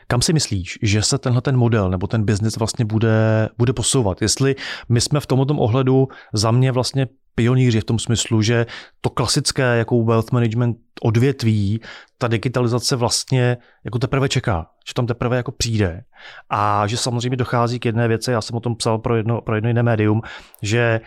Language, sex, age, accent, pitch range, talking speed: Czech, male, 30-49, native, 110-125 Hz, 180 wpm